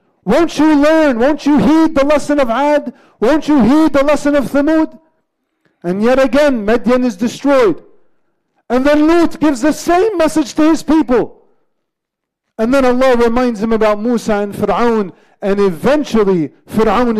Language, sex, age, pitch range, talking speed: English, male, 40-59, 215-275 Hz, 155 wpm